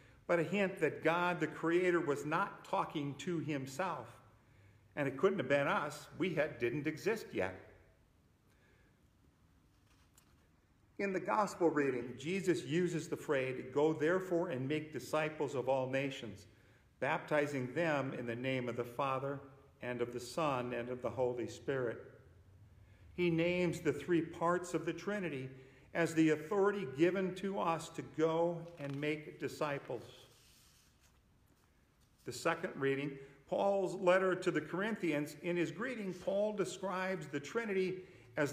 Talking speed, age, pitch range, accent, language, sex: 140 wpm, 50-69, 125-170 Hz, American, English, male